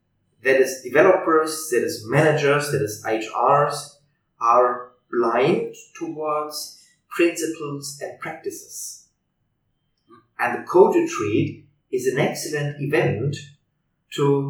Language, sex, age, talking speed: English, male, 30-49, 100 wpm